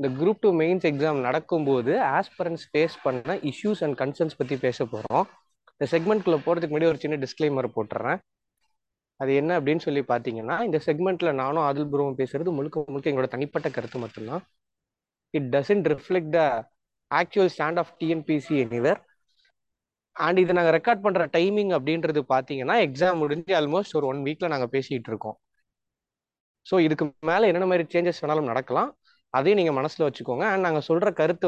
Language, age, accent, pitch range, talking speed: Tamil, 20-39, native, 140-185 Hz, 155 wpm